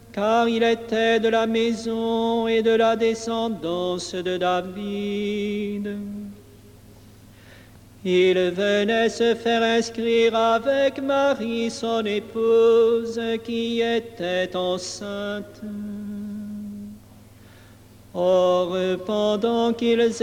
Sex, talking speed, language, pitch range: male, 80 wpm, French, 200-230 Hz